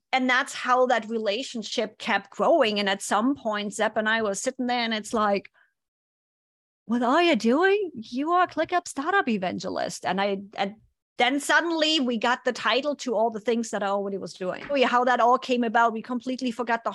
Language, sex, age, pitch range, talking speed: English, female, 30-49, 210-260 Hz, 200 wpm